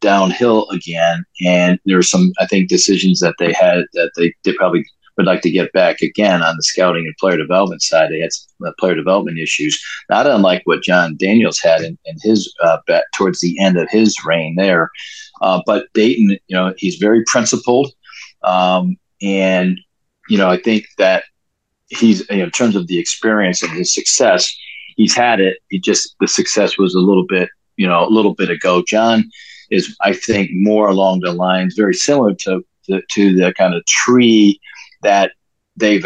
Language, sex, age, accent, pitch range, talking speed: English, male, 40-59, American, 90-100 Hz, 190 wpm